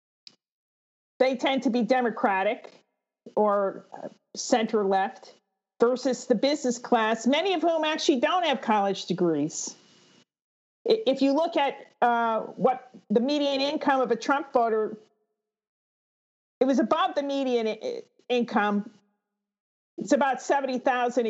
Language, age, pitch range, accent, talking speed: English, 40-59, 215-270 Hz, American, 120 wpm